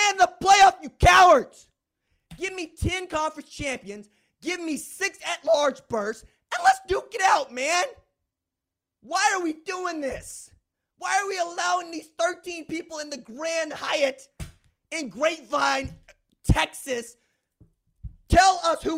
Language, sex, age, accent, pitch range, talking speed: English, male, 30-49, American, 255-345 Hz, 135 wpm